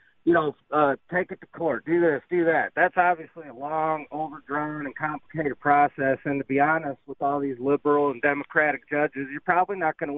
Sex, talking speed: male, 205 wpm